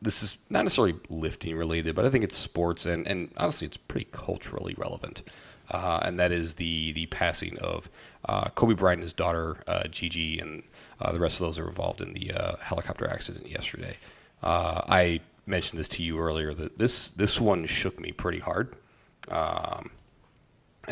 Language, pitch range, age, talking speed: English, 80-90 Hz, 30-49, 185 wpm